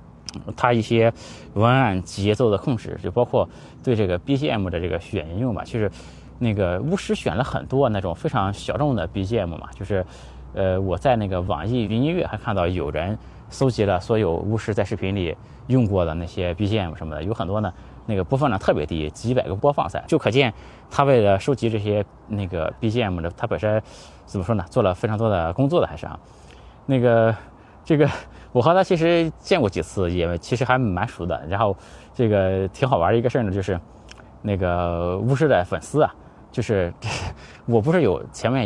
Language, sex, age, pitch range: Chinese, male, 20-39, 90-125 Hz